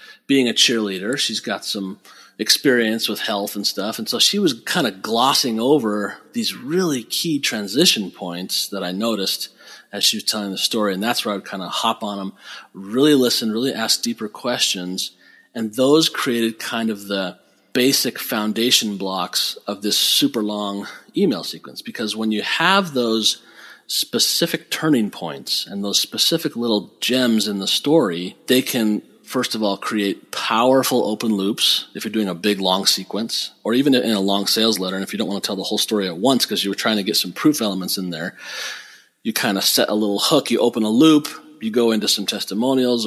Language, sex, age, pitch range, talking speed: English, male, 40-59, 100-125 Hz, 200 wpm